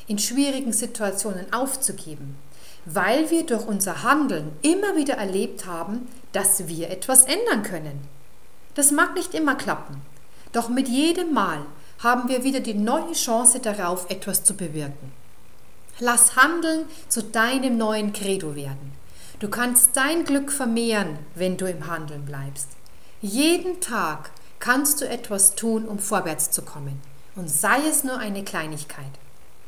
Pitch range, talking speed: 175-265 Hz, 140 wpm